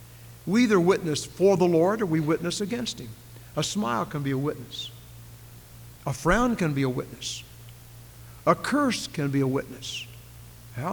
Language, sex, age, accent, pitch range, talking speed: English, male, 60-79, American, 120-200 Hz, 165 wpm